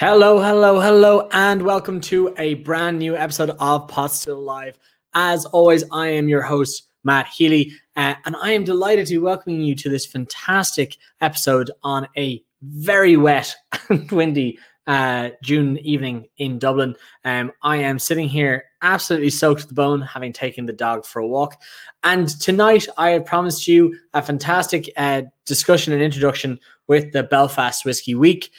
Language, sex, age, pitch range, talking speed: English, male, 20-39, 140-170 Hz, 170 wpm